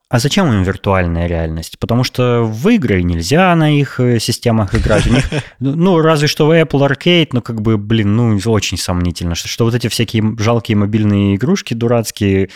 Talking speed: 170 wpm